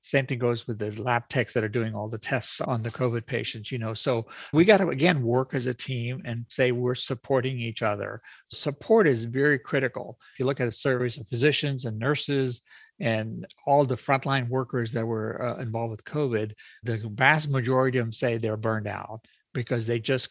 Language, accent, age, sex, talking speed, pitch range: English, American, 40-59, male, 210 wpm, 115-130 Hz